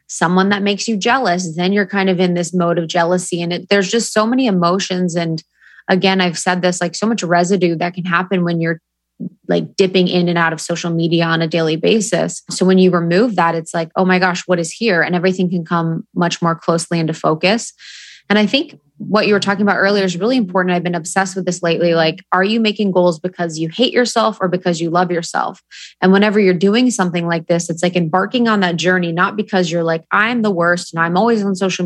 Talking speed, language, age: 235 wpm, English, 20-39